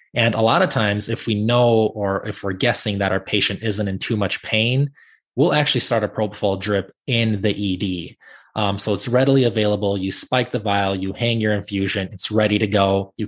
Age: 20-39